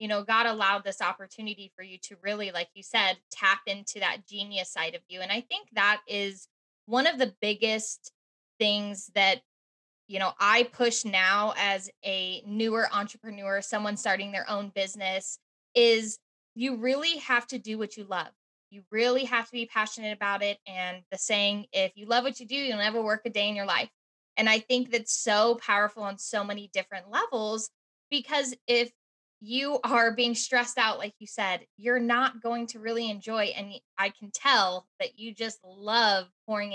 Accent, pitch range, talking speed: American, 195-235 Hz, 190 wpm